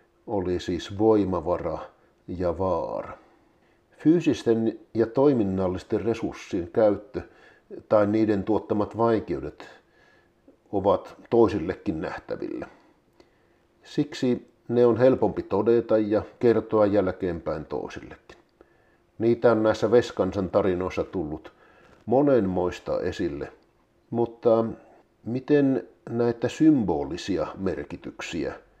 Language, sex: Finnish, male